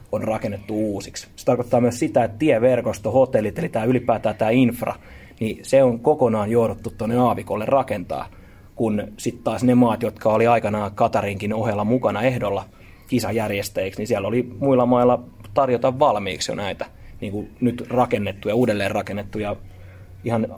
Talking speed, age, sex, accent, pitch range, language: 150 wpm, 30-49, male, native, 105-120 Hz, Finnish